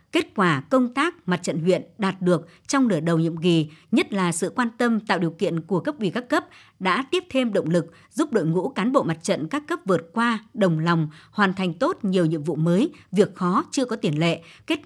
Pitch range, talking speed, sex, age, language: 175-240 Hz, 240 wpm, male, 60-79, Vietnamese